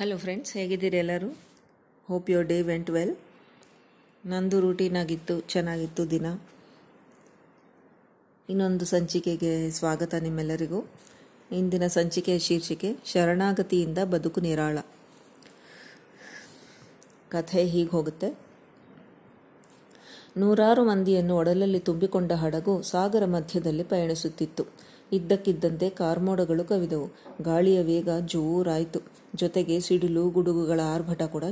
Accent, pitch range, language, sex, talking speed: native, 165-190 Hz, Kannada, female, 85 wpm